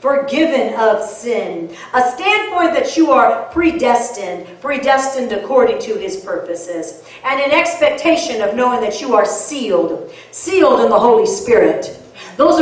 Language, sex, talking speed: English, female, 140 wpm